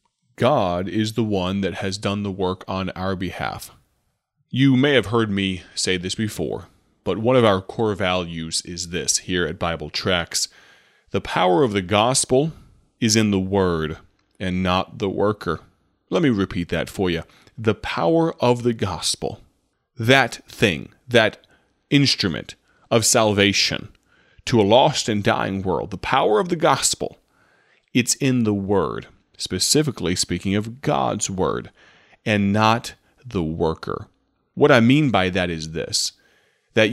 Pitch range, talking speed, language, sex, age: 95-115 Hz, 155 wpm, English, male, 30-49